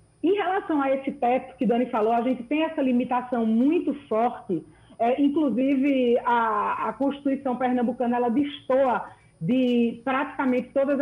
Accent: Brazilian